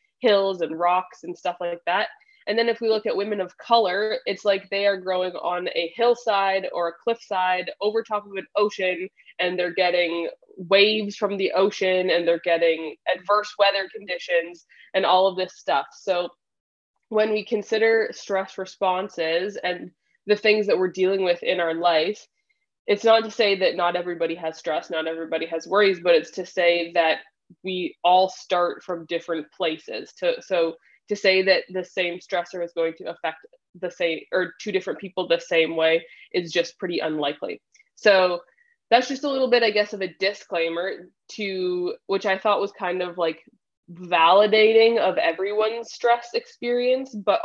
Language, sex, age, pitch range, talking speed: English, female, 20-39, 170-210 Hz, 175 wpm